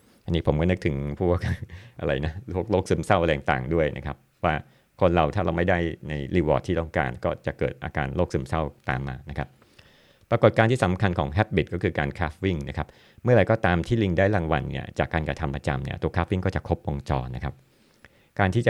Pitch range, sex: 80-100 Hz, male